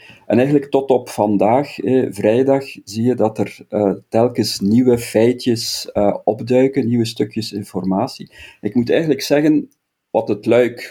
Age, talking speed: 50-69, 150 wpm